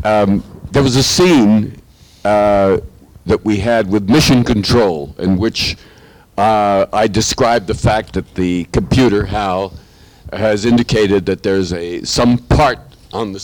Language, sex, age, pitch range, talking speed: English, male, 60-79, 100-125 Hz, 145 wpm